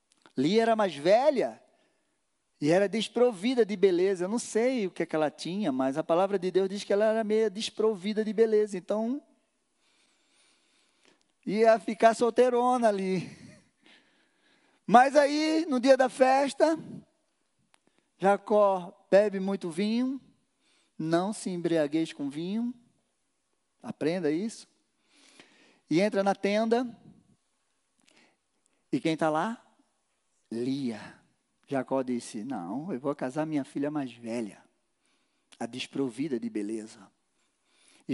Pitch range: 170-285 Hz